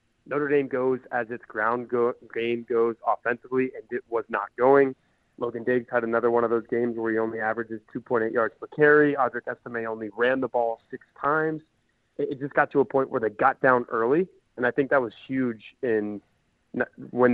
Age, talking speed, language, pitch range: 20-39, 205 wpm, English, 115-135 Hz